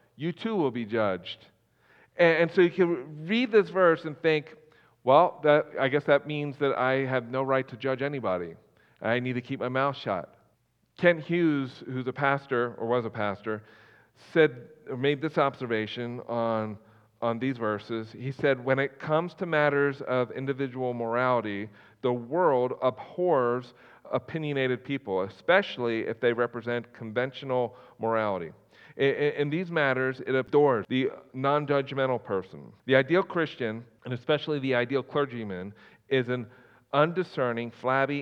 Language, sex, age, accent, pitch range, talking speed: English, male, 40-59, American, 120-145 Hz, 145 wpm